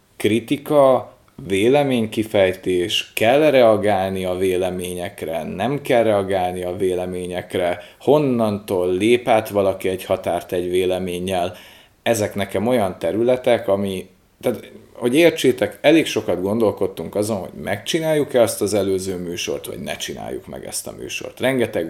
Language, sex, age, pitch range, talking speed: Hungarian, male, 30-49, 90-115 Hz, 120 wpm